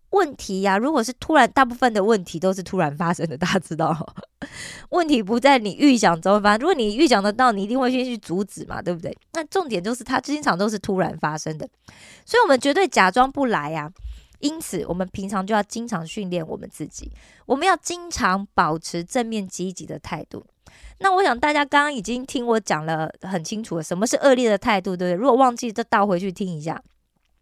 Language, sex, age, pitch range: Korean, female, 20-39, 180-255 Hz